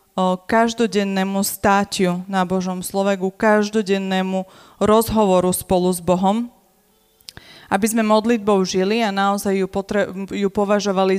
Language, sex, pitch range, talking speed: Slovak, female, 185-205 Hz, 105 wpm